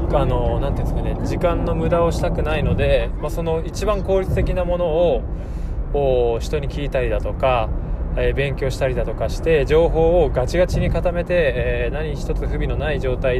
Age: 20-39